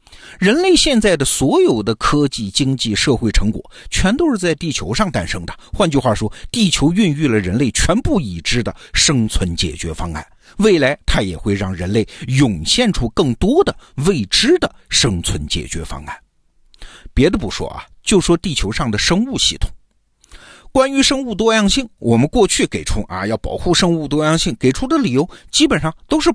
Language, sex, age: Chinese, male, 50-69